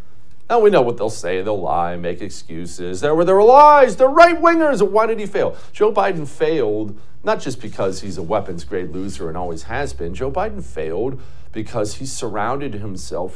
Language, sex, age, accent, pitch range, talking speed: English, male, 40-59, American, 105-155 Hz, 185 wpm